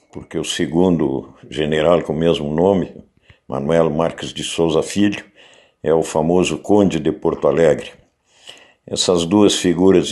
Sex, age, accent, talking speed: male, 60-79, Brazilian, 135 wpm